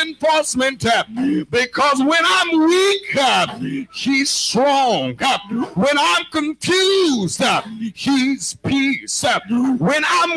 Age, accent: 60-79, American